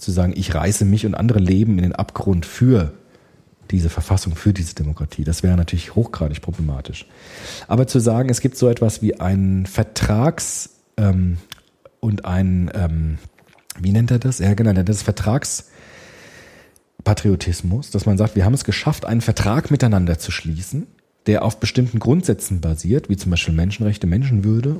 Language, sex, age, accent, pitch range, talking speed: German, male, 40-59, German, 95-130 Hz, 165 wpm